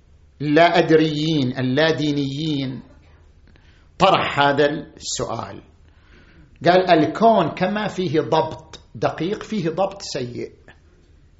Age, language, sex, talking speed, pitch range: 50-69, Arabic, male, 85 wpm, 145-245 Hz